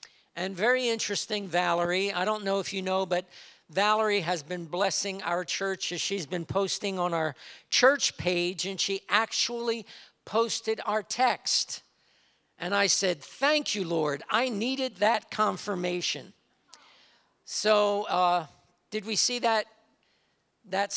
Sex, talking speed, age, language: male, 135 wpm, 50-69, English